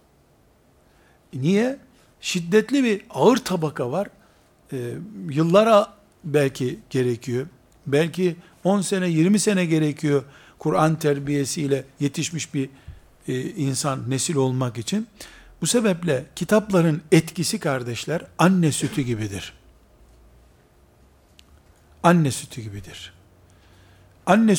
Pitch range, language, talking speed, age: 125-195 Hz, Turkish, 90 wpm, 60-79